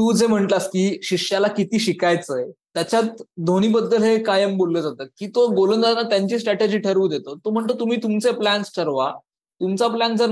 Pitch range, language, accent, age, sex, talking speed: 175-210 Hz, Marathi, native, 20-39, male, 175 wpm